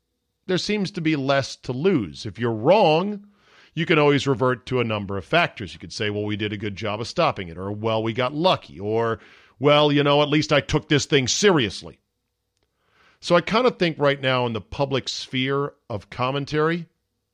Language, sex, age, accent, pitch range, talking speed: English, male, 40-59, American, 105-145 Hz, 210 wpm